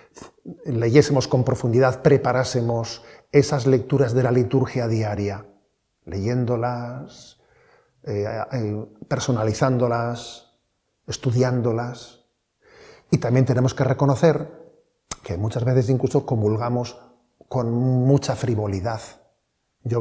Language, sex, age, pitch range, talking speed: Spanish, male, 40-59, 115-135 Hz, 85 wpm